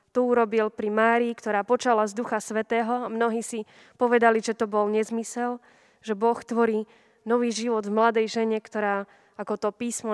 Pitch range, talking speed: 210-235 Hz, 170 wpm